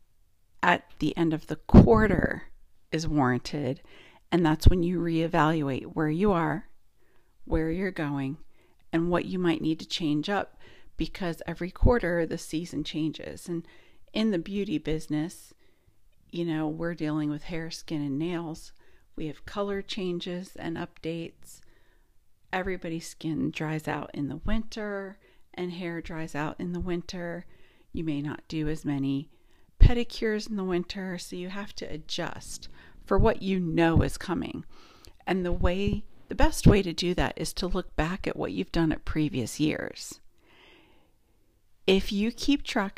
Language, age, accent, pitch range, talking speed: English, 50-69, American, 155-185 Hz, 155 wpm